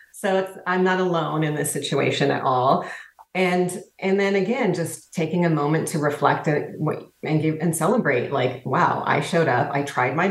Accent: American